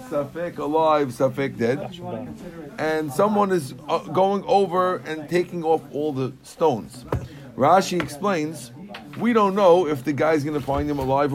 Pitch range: 135-170 Hz